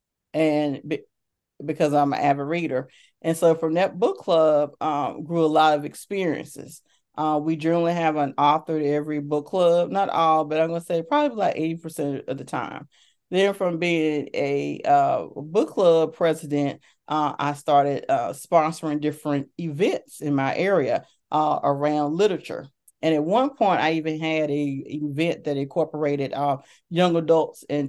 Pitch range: 145-170 Hz